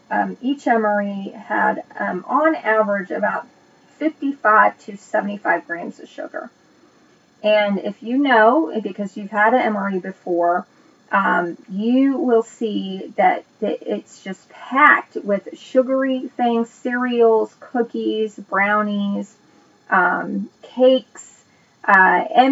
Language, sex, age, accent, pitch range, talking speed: English, female, 30-49, American, 205-265 Hz, 110 wpm